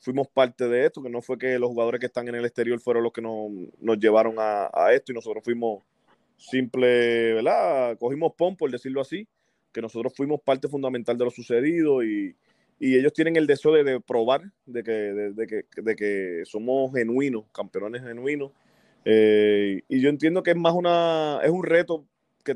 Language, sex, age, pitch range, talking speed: Spanish, male, 20-39, 115-140 Hz, 195 wpm